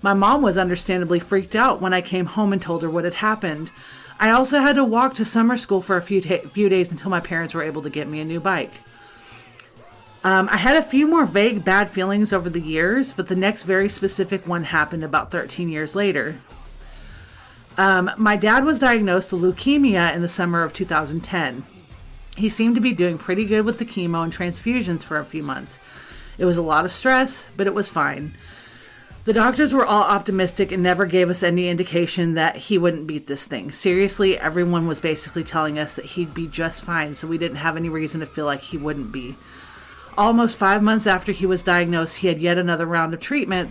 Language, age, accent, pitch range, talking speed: English, 40-59, American, 165-205 Hz, 215 wpm